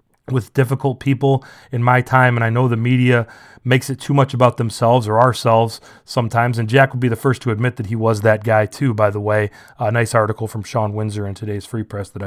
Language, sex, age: English, male, 30-49